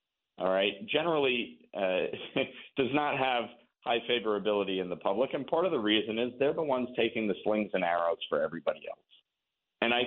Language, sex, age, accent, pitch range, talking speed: English, male, 50-69, American, 105-135 Hz, 185 wpm